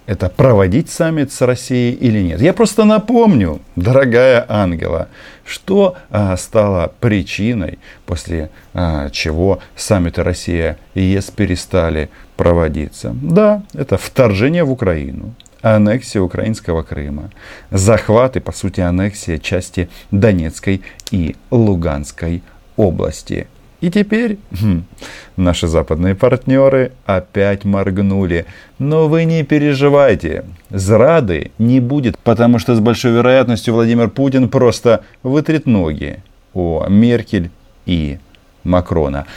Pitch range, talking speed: 90-125 Hz, 110 wpm